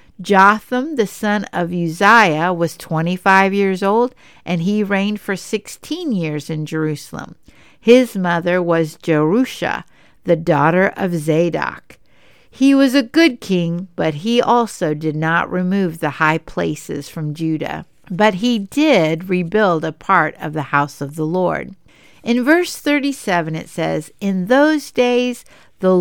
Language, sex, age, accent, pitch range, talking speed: English, female, 60-79, American, 160-220 Hz, 145 wpm